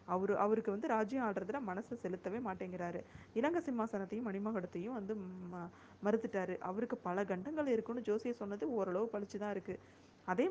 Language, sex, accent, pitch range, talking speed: Tamil, female, native, 185-225 Hz, 130 wpm